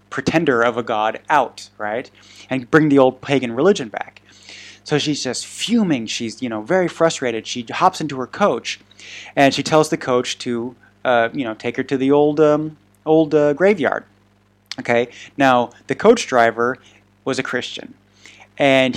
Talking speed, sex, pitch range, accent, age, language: 170 wpm, male, 115-150 Hz, American, 30-49, English